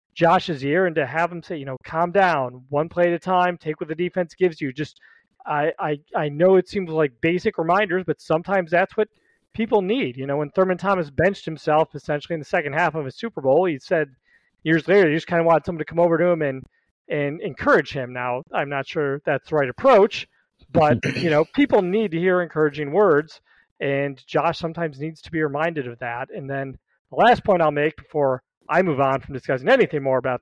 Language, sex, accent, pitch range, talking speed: English, male, American, 140-175 Hz, 225 wpm